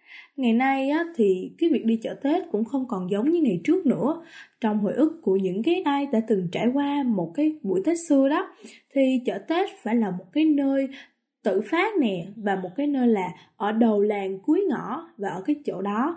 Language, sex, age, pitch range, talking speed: Vietnamese, female, 10-29, 215-315 Hz, 220 wpm